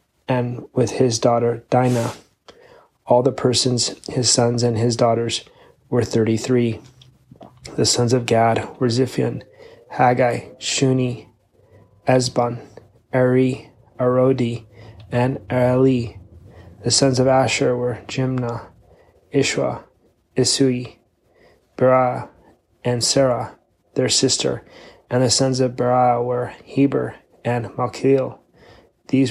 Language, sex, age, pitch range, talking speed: English, male, 30-49, 115-130 Hz, 105 wpm